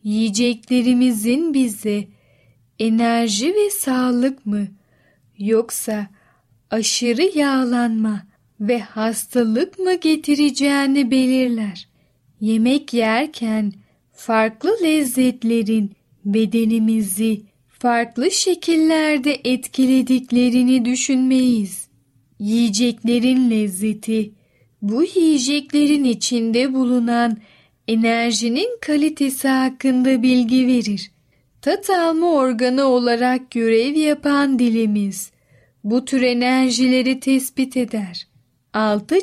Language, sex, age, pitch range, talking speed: Turkish, female, 10-29, 215-265 Hz, 70 wpm